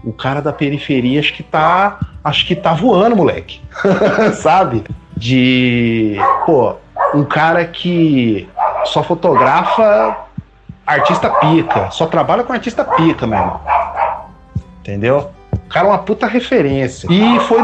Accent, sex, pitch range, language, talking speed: Brazilian, male, 120-175 Hz, Portuguese, 125 wpm